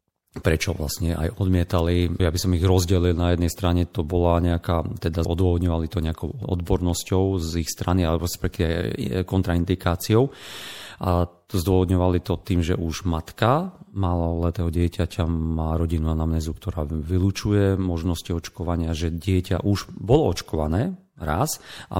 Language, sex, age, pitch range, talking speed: Slovak, male, 40-59, 85-95 Hz, 140 wpm